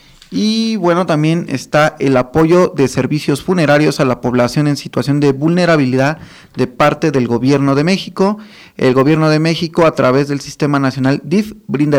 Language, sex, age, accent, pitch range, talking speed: Spanish, male, 30-49, Mexican, 135-175 Hz, 165 wpm